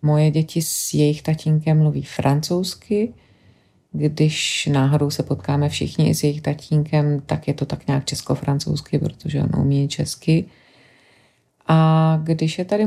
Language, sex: Czech, female